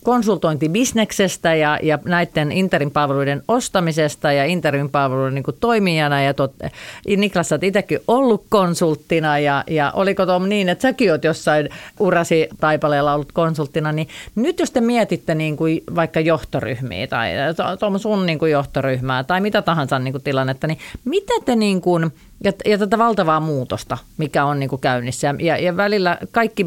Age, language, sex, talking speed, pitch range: 40-59, Finnish, female, 155 wpm, 135-180 Hz